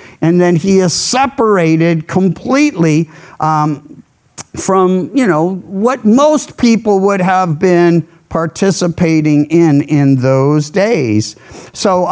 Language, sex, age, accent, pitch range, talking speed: English, male, 50-69, American, 170-240 Hz, 110 wpm